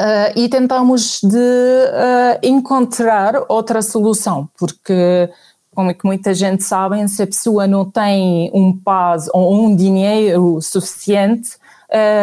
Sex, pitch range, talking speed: female, 185-220 Hz, 135 wpm